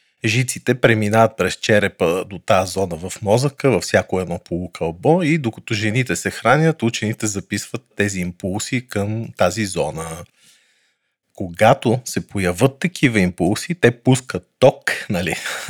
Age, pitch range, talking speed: 40-59, 100-120 Hz, 130 wpm